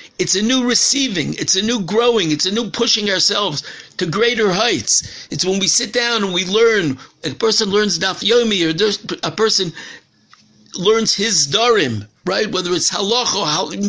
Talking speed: 175 wpm